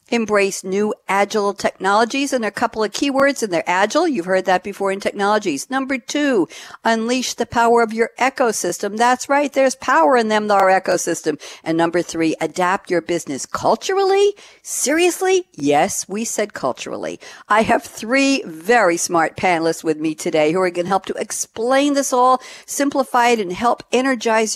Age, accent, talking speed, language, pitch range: 60-79, American, 170 wpm, English, 170-240 Hz